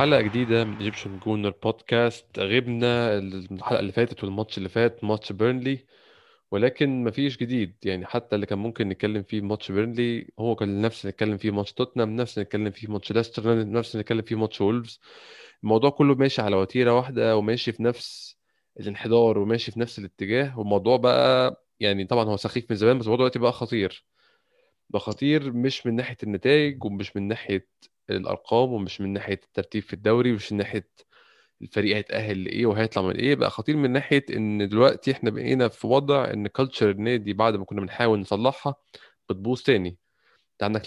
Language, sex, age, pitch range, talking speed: Arabic, male, 20-39, 100-120 Hz, 170 wpm